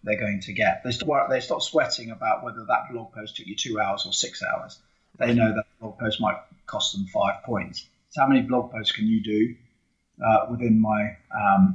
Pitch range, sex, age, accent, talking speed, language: 110-160 Hz, male, 30-49, British, 215 wpm, English